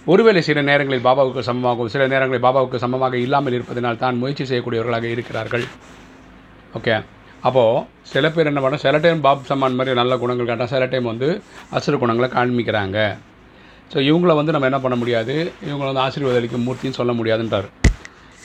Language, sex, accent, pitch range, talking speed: Tamil, male, native, 120-140 Hz, 155 wpm